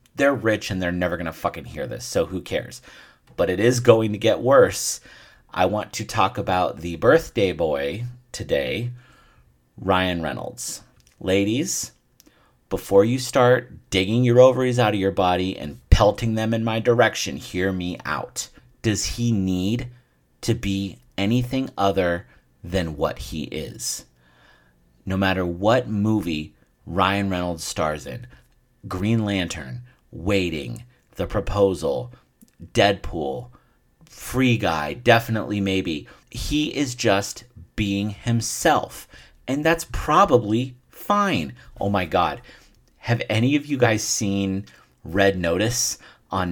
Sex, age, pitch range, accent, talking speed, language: male, 40-59, 95-125 Hz, American, 130 wpm, English